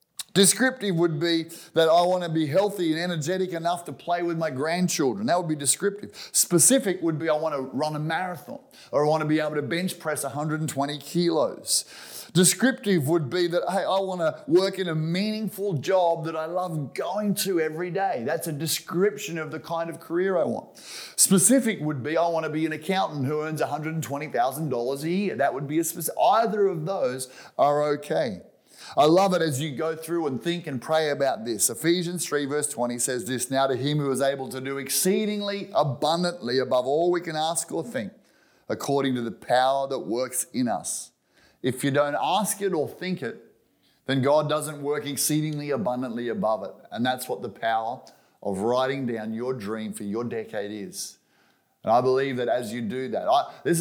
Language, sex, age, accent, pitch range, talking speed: English, male, 30-49, Australian, 135-175 Hz, 200 wpm